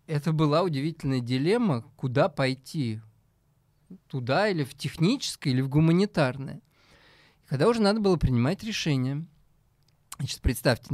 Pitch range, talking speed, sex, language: 120-155 Hz, 110 wpm, male, Russian